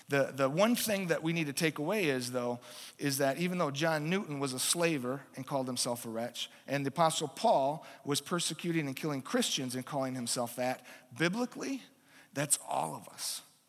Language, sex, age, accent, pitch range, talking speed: English, male, 40-59, American, 130-165 Hz, 195 wpm